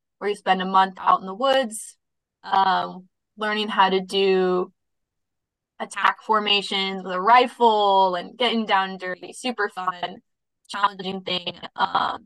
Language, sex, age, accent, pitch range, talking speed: English, female, 20-39, American, 185-225 Hz, 135 wpm